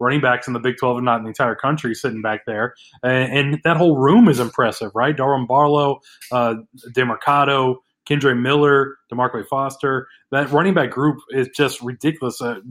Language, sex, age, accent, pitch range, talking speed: English, male, 20-39, American, 125-150 Hz, 185 wpm